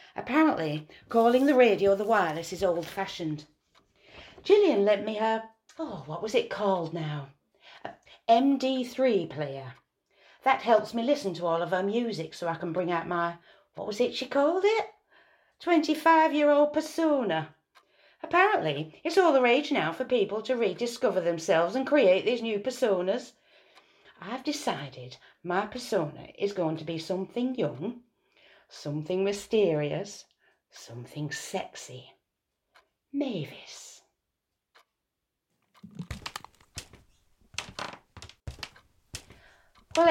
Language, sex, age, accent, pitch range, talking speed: English, female, 40-59, British, 185-265 Hz, 110 wpm